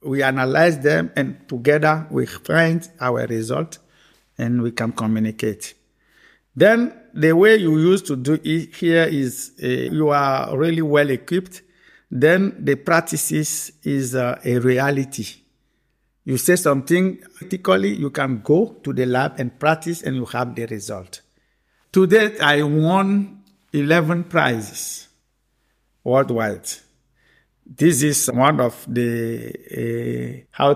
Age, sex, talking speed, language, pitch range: 60-79, male, 130 wpm, English, 120-150 Hz